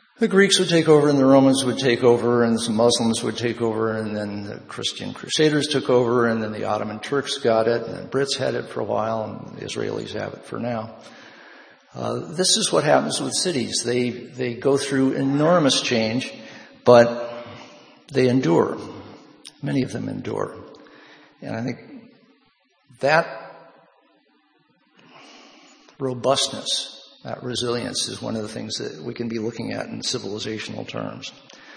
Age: 60-79